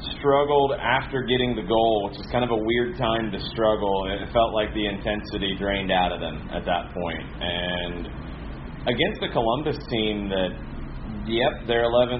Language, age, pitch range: English, 30-49, 90-115 Hz